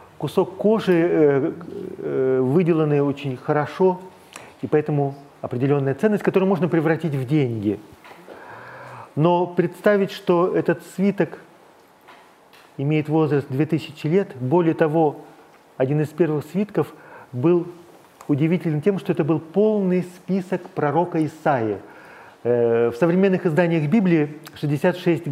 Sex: male